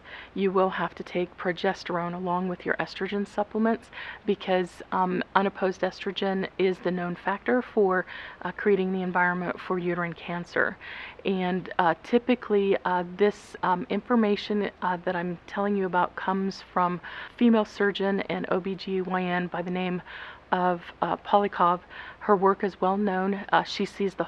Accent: American